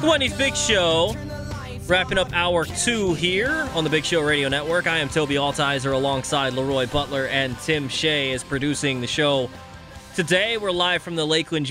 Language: English